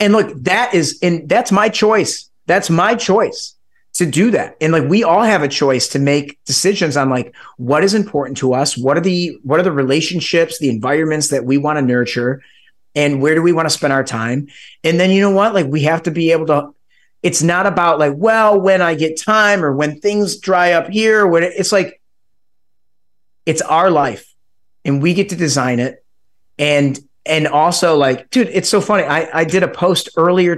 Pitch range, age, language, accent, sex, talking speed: 140-190 Hz, 30-49, English, American, male, 210 wpm